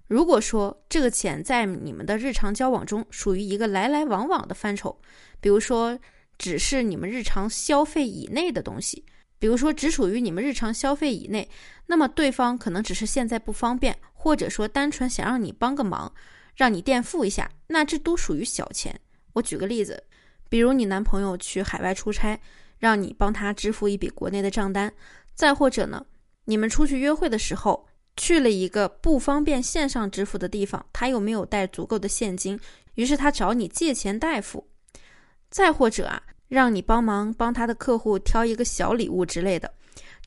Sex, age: female, 20-39